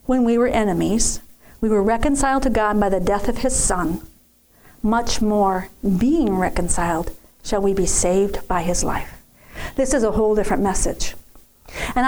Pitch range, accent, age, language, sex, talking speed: 205-250 Hz, American, 50-69, English, female, 165 wpm